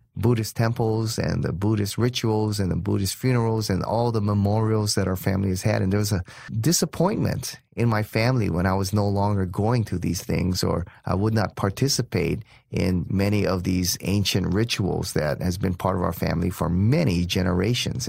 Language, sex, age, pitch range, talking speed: English, male, 30-49, 95-125 Hz, 190 wpm